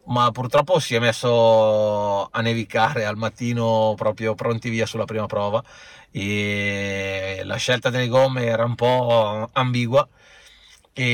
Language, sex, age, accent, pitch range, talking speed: Italian, male, 30-49, native, 105-125 Hz, 135 wpm